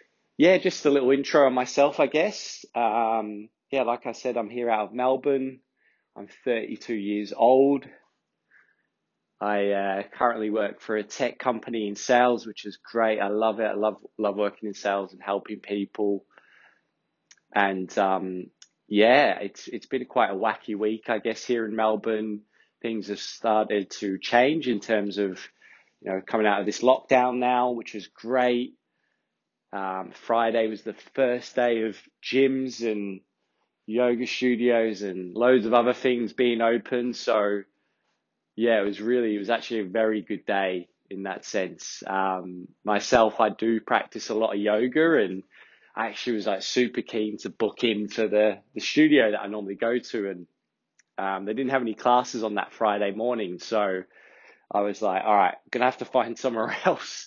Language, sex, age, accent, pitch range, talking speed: English, male, 20-39, British, 100-125 Hz, 175 wpm